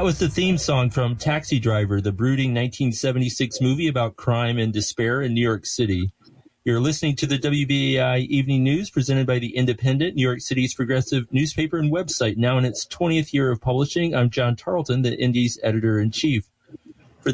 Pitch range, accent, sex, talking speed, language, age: 120-145 Hz, American, male, 180 wpm, English, 40-59